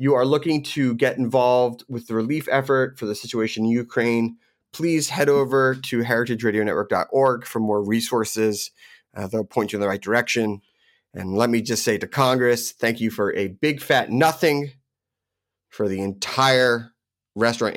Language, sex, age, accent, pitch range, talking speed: English, male, 30-49, American, 105-130 Hz, 165 wpm